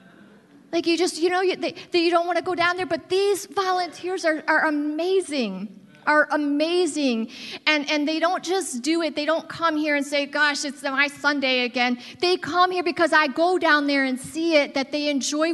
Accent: American